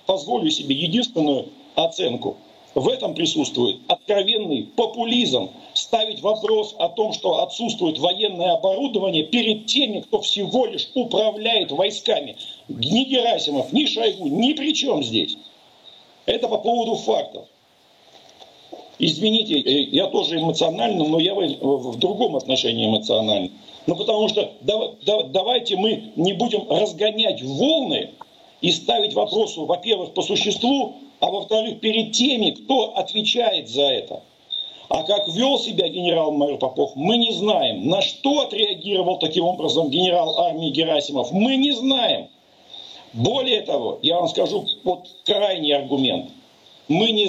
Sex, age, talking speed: male, 50-69, 125 wpm